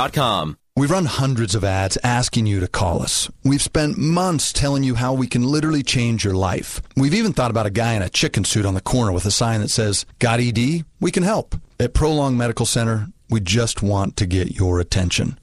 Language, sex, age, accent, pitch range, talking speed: English, male, 40-59, American, 100-135 Hz, 220 wpm